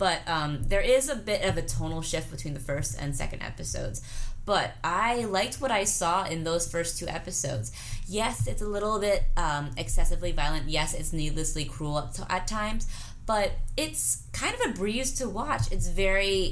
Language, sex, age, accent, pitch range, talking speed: English, female, 20-39, American, 130-175 Hz, 190 wpm